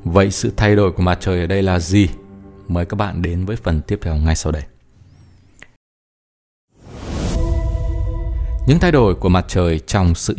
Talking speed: 175 wpm